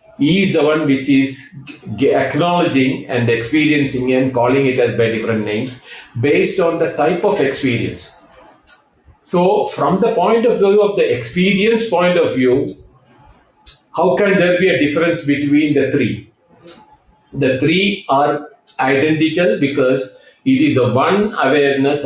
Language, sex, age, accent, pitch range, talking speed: English, male, 50-69, Indian, 125-160 Hz, 145 wpm